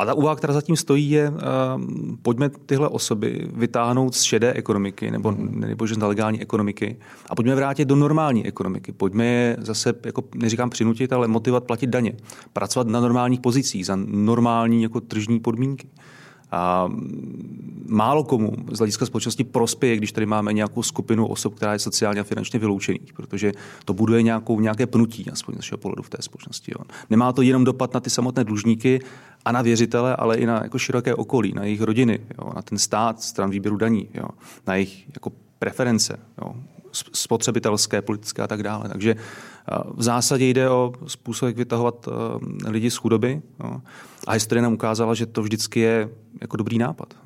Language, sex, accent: Czech, male, native